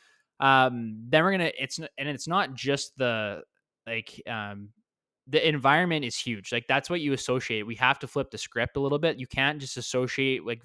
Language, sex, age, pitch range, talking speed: English, male, 20-39, 110-135 Hz, 205 wpm